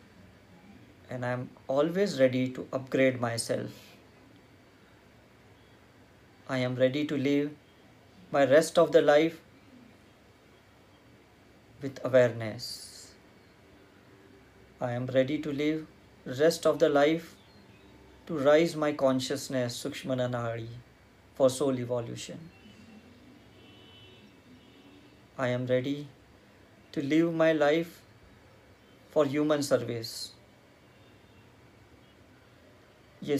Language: Hindi